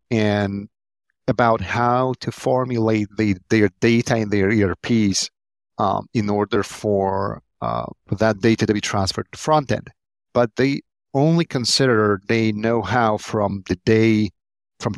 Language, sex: English, male